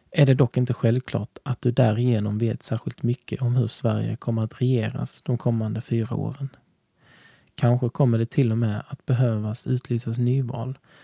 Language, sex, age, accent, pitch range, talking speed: Swedish, male, 20-39, native, 110-135 Hz, 170 wpm